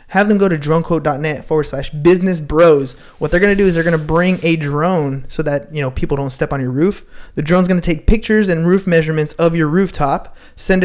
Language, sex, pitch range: English, male, 150-180 Hz